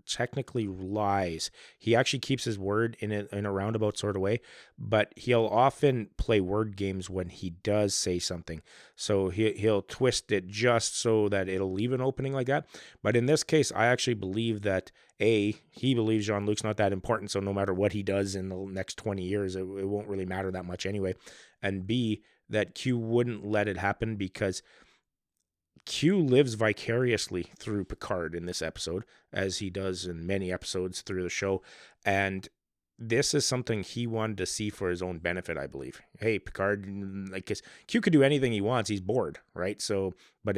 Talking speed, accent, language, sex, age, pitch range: 190 wpm, American, English, male, 30-49, 95-115 Hz